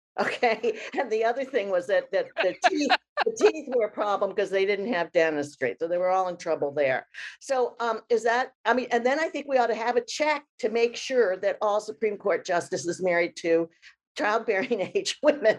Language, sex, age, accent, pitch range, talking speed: English, female, 50-69, American, 175-275 Hz, 215 wpm